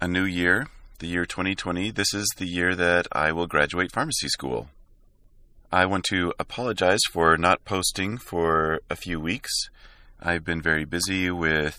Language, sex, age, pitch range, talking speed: English, male, 30-49, 80-105 Hz, 165 wpm